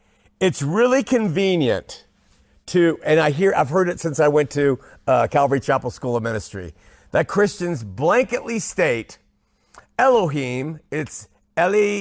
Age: 50-69